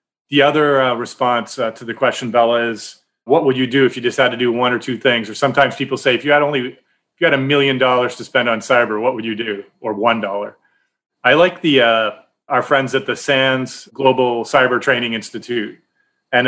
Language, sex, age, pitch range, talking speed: English, male, 30-49, 115-145 Hz, 225 wpm